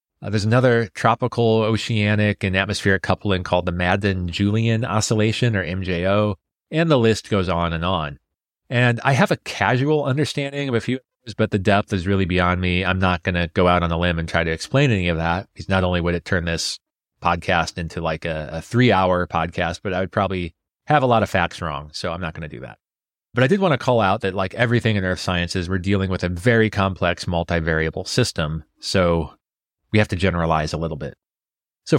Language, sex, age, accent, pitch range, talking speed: English, male, 30-49, American, 90-110 Hz, 215 wpm